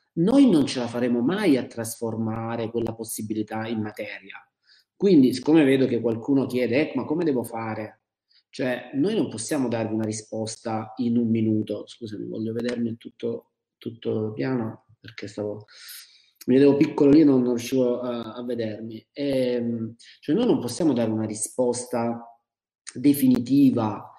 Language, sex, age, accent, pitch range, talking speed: Italian, male, 30-49, native, 110-130 Hz, 150 wpm